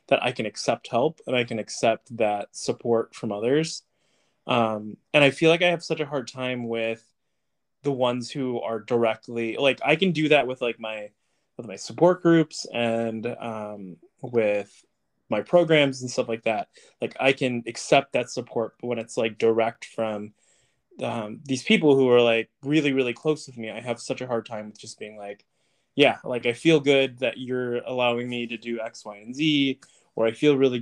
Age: 20-39